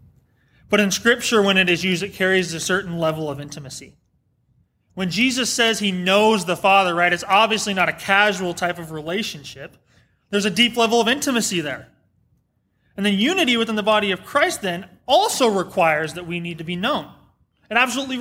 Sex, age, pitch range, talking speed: male, 30-49, 150-205 Hz, 185 wpm